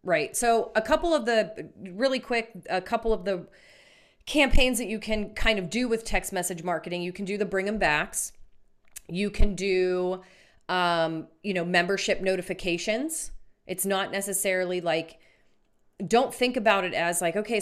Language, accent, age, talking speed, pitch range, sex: English, American, 30-49, 165 wpm, 170-215 Hz, female